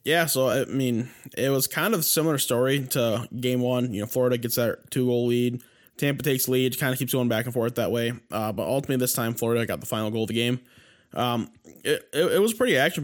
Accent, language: American, English